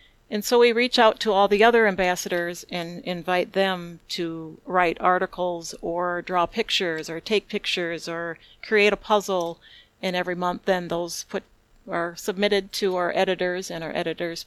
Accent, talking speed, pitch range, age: American, 165 wpm, 170-190 Hz, 40-59